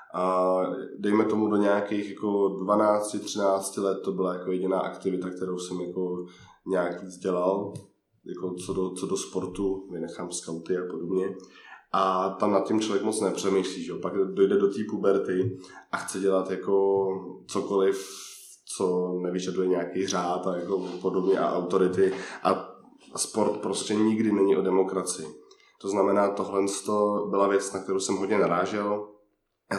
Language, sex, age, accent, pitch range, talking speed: Czech, male, 20-39, native, 95-100 Hz, 150 wpm